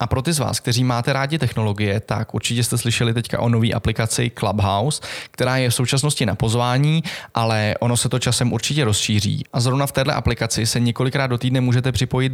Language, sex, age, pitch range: Czech, male, 20-39, 110-130 Hz